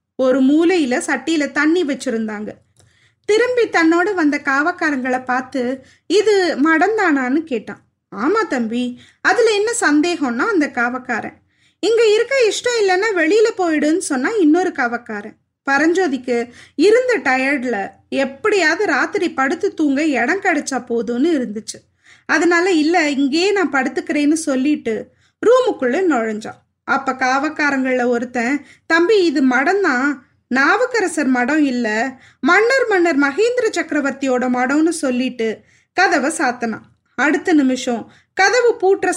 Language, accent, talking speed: Tamil, native, 105 wpm